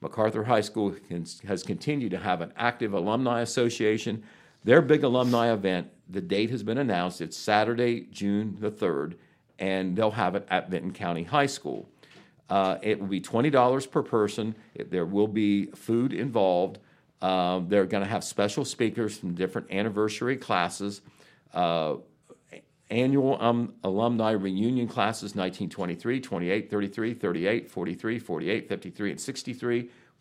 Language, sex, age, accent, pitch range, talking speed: English, male, 50-69, American, 95-125 Hz, 140 wpm